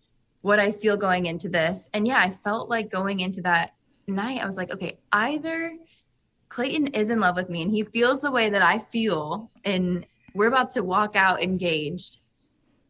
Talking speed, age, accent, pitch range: 190 wpm, 20-39, American, 185-235 Hz